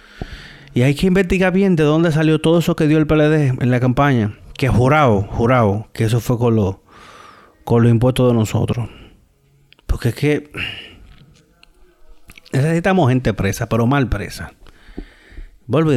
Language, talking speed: Spanish, 145 wpm